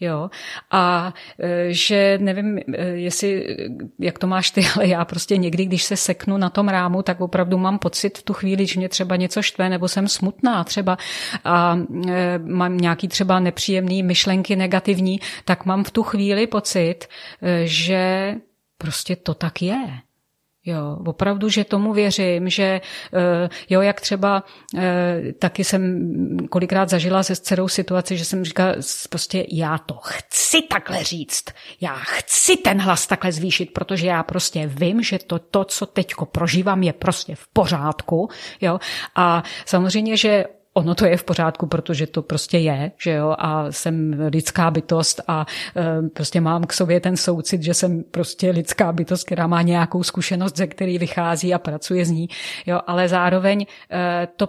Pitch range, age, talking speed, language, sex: 170-195 Hz, 30-49, 160 wpm, Czech, female